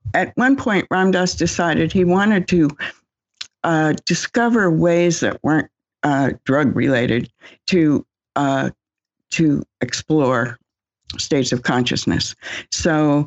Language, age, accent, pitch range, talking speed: English, 60-79, American, 130-165 Hz, 110 wpm